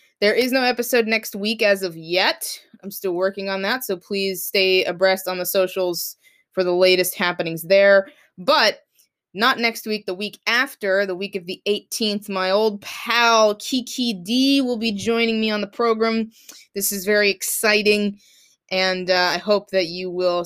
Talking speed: 180 wpm